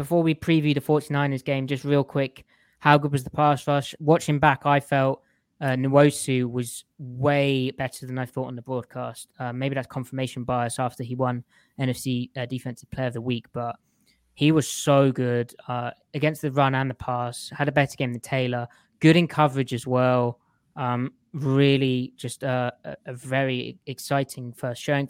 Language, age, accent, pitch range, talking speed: English, 20-39, British, 125-145 Hz, 185 wpm